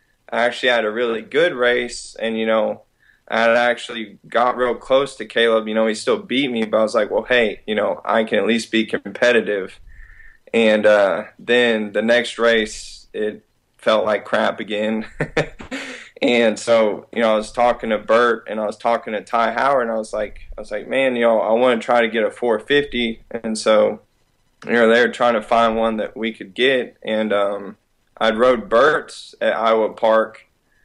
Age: 20-39